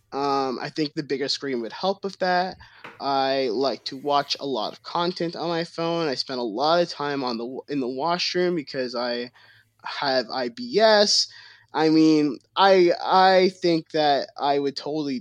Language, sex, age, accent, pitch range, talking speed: English, male, 20-39, American, 135-180 Hz, 180 wpm